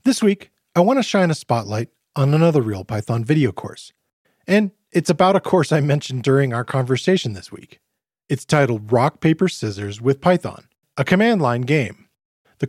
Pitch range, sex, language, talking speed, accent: 125-180 Hz, male, English, 170 wpm, American